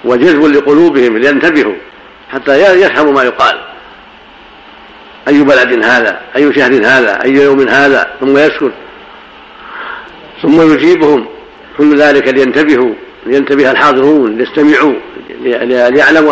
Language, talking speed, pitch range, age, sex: Arabic, 100 wpm, 135-165 Hz, 50-69, male